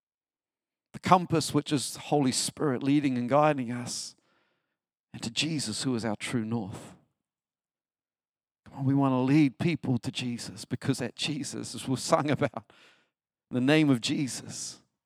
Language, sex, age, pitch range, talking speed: English, male, 50-69, 135-185 Hz, 160 wpm